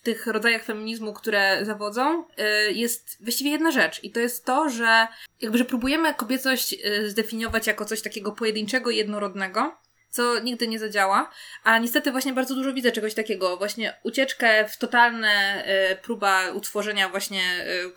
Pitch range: 205-245 Hz